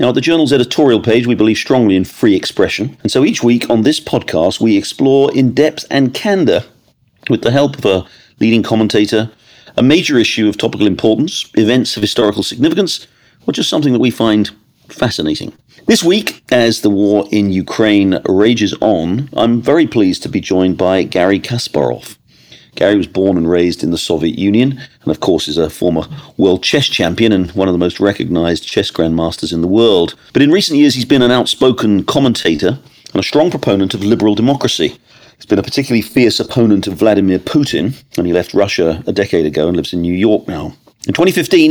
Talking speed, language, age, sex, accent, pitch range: 195 wpm, English, 40-59, male, British, 95-130 Hz